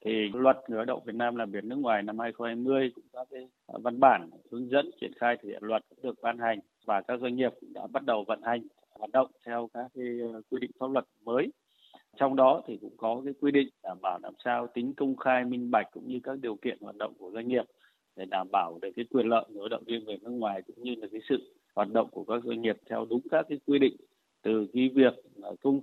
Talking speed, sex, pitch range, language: 250 wpm, male, 115-130 Hz, Vietnamese